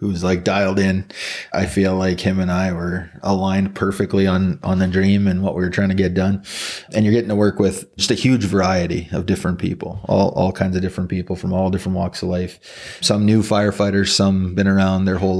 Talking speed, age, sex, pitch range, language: 225 wpm, 30-49, male, 95-100 Hz, English